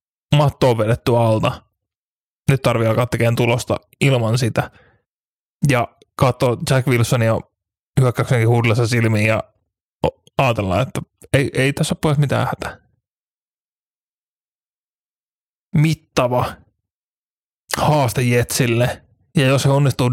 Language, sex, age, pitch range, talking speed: Finnish, male, 20-39, 115-135 Hz, 100 wpm